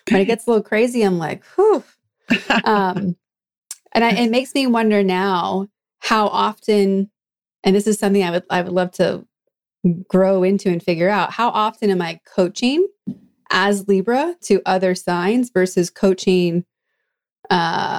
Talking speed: 155 wpm